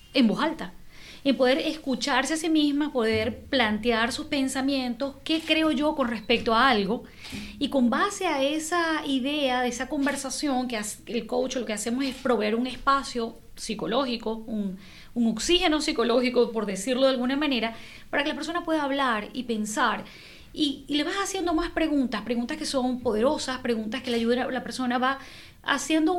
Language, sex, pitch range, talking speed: Spanish, female, 250-315 Hz, 175 wpm